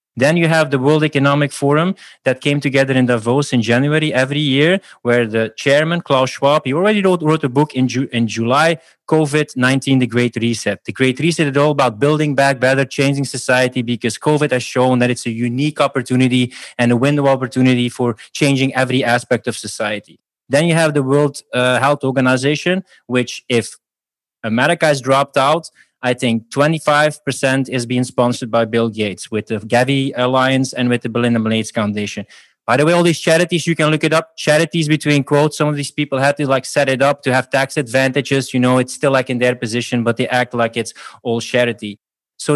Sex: male